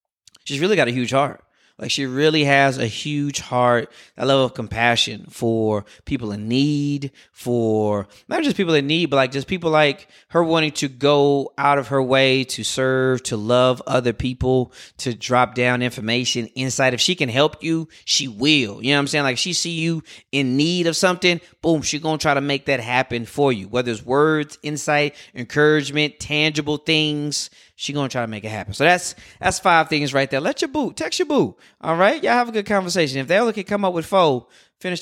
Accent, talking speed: American, 215 wpm